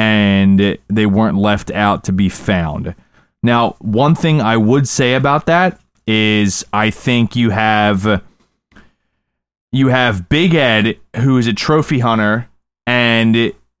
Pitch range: 105-140 Hz